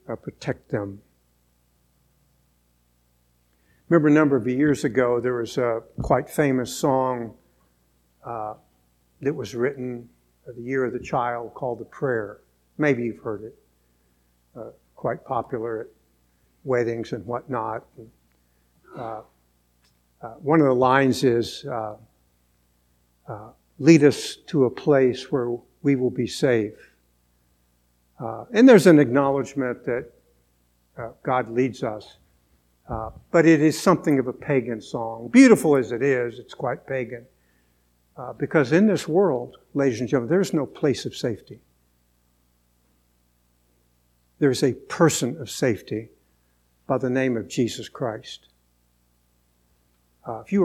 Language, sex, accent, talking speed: English, male, American, 130 wpm